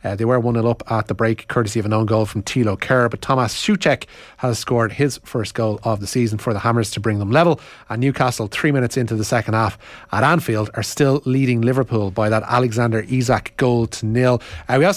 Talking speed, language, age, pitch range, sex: 235 wpm, English, 30-49, 110-135 Hz, male